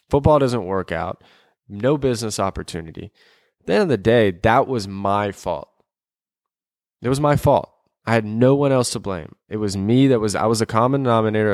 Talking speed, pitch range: 200 wpm, 100-125 Hz